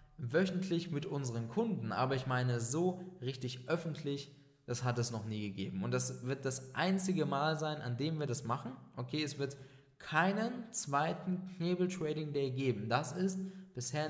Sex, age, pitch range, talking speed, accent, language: male, 20-39, 125-180 Hz, 170 wpm, German, German